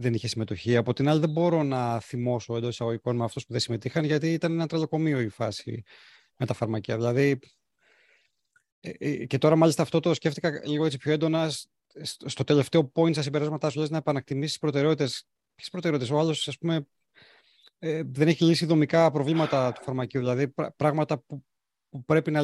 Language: Greek